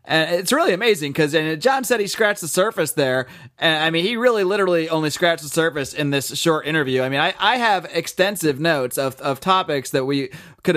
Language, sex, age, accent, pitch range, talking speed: English, male, 30-49, American, 135-185 Hz, 215 wpm